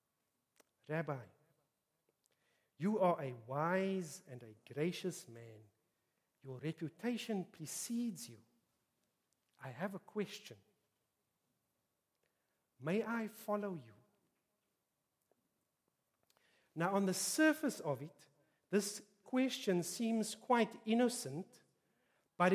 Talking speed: 90 wpm